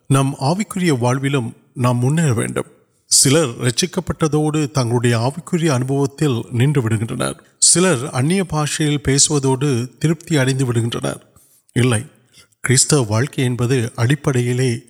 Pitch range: 125-155 Hz